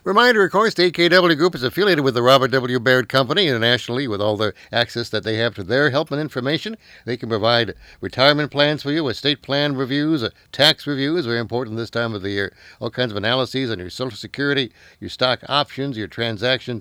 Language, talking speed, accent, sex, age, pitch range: English, 210 wpm, American, male, 60-79, 110-145 Hz